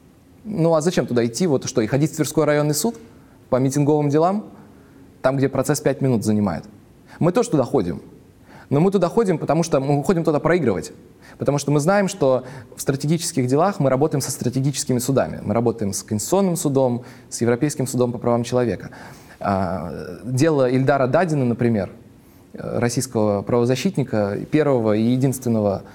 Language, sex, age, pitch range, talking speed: Russian, male, 20-39, 115-145 Hz, 160 wpm